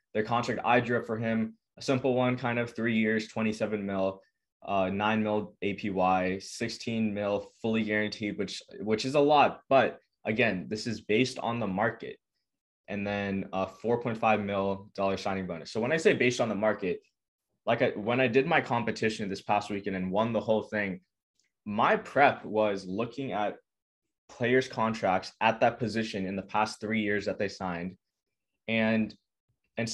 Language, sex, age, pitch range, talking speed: English, male, 20-39, 100-120 Hz, 180 wpm